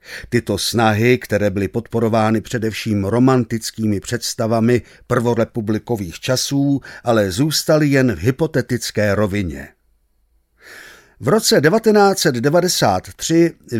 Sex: male